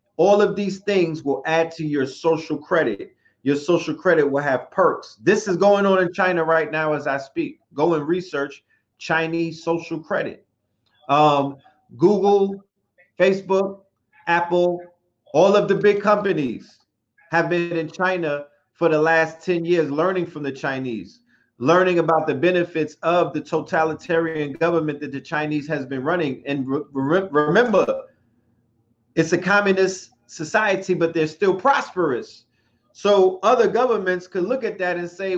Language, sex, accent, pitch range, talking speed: English, male, American, 155-195 Hz, 150 wpm